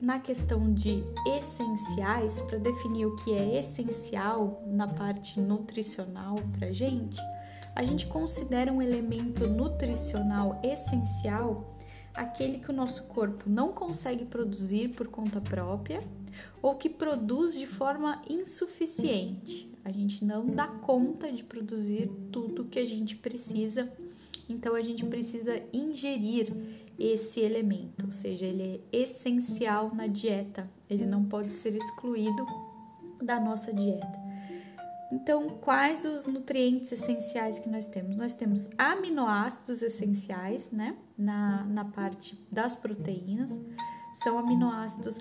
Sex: female